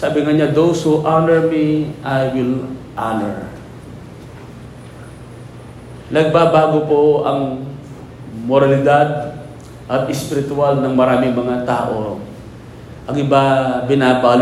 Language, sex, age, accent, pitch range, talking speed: Filipino, male, 40-59, native, 125-145 Hz, 90 wpm